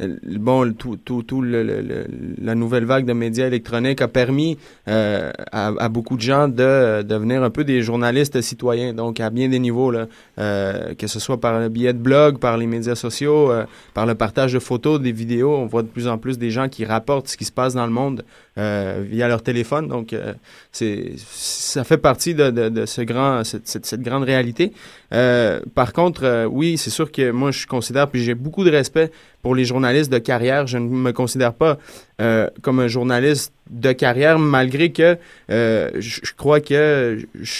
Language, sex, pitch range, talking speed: French, male, 115-145 Hz, 210 wpm